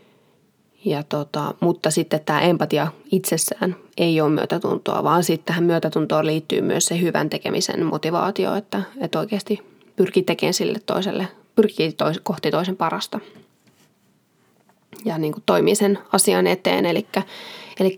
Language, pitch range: Finnish, 170-210 Hz